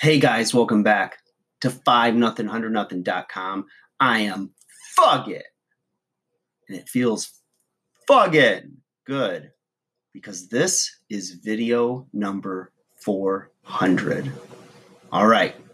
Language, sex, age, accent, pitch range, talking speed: English, male, 30-49, American, 105-135 Hz, 90 wpm